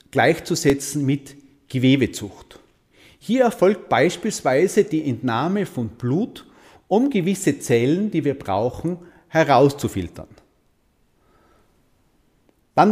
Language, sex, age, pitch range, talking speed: German, male, 40-59, 125-185 Hz, 85 wpm